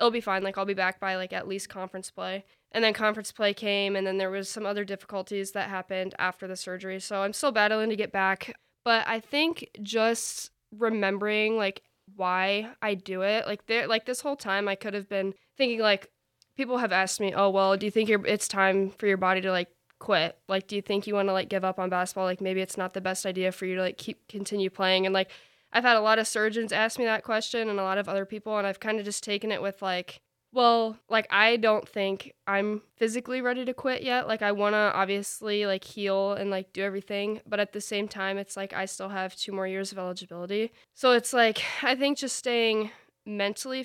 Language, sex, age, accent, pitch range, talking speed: English, female, 10-29, American, 190-220 Hz, 240 wpm